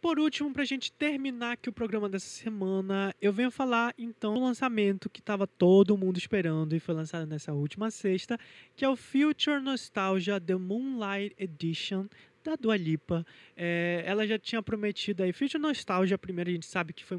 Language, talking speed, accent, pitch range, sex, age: Portuguese, 180 wpm, Brazilian, 170-215 Hz, male, 20-39